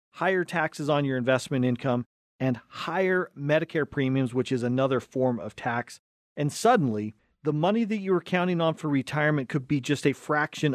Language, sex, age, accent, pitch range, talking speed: English, male, 40-59, American, 125-150 Hz, 180 wpm